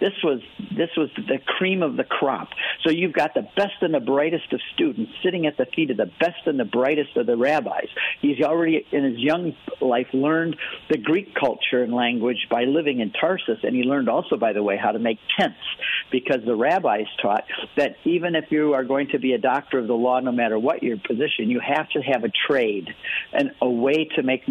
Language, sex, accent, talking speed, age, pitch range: English, male, American, 225 wpm, 60-79, 130-175 Hz